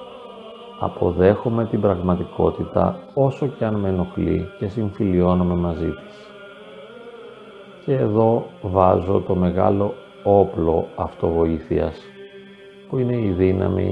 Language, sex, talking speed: Greek, male, 100 wpm